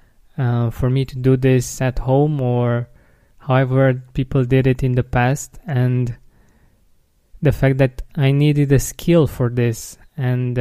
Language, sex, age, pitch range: English, male, 20-39, 125-135 Hz